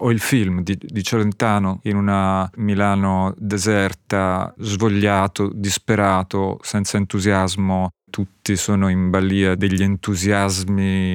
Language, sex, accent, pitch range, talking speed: Italian, male, native, 90-105 Hz, 110 wpm